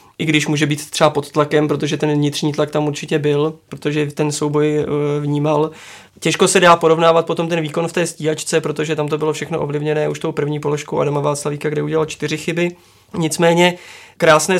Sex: male